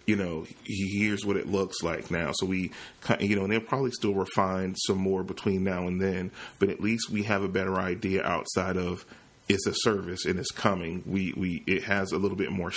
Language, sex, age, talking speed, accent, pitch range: English, male, 30-49, 220 wpm, American, 95-100 Hz